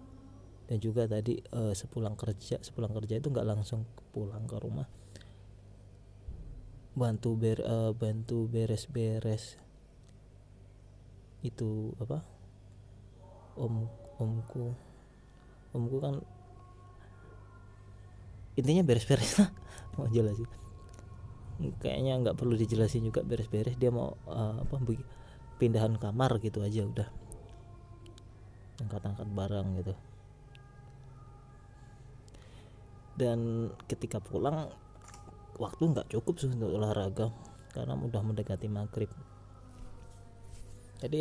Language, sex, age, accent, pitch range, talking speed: Indonesian, male, 20-39, native, 100-120 Hz, 90 wpm